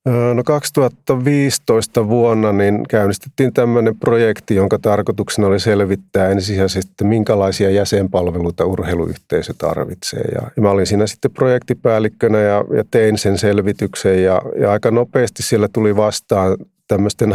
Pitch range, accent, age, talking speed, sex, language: 95-110 Hz, native, 30-49, 125 wpm, male, Finnish